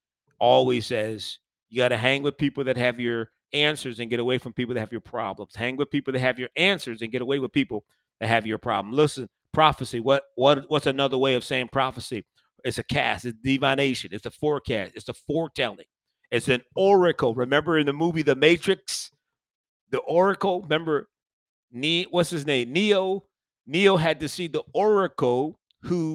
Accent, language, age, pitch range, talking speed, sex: American, English, 40-59, 130-190 Hz, 190 wpm, male